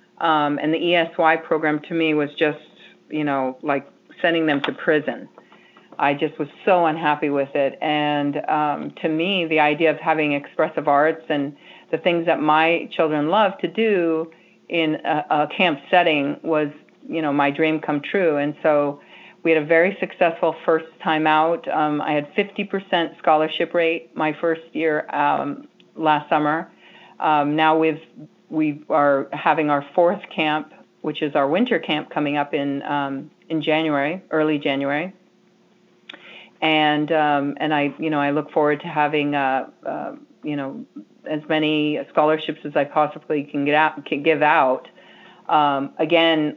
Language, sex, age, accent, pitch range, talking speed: English, female, 40-59, American, 145-165 Hz, 165 wpm